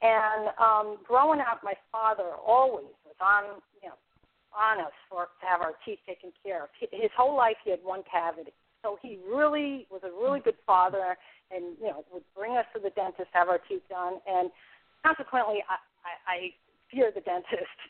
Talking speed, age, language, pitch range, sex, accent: 195 wpm, 40-59, English, 190-260 Hz, female, American